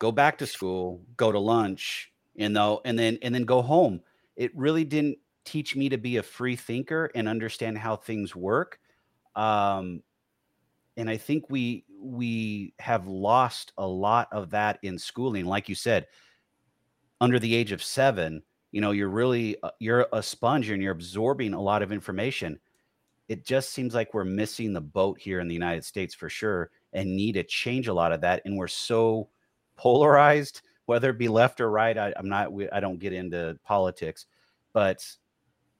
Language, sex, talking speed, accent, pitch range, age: English, male, 180 wpm, American, 95-120 Hz, 30-49